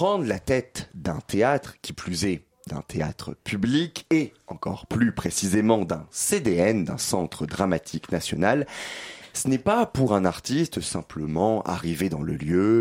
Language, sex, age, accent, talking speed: French, male, 30-49, French, 150 wpm